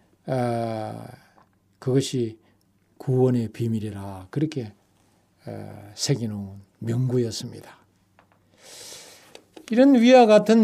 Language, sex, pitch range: Korean, male, 110-175 Hz